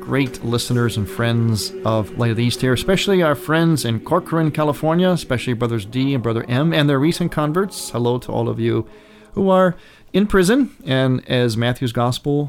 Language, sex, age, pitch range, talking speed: English, male, 40-59, 115-150 Hz, 185 wpm